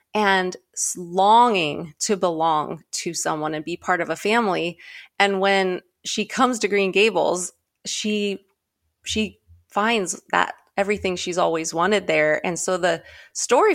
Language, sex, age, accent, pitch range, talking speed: English, female, 30-49, American, 175-210 Hz, 140 wpm